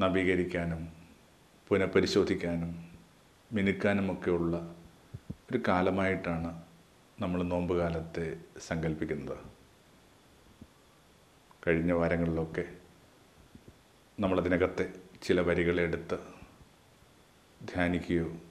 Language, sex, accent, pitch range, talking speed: Malayalam, male, native, 85-95 Hz, 45 wpm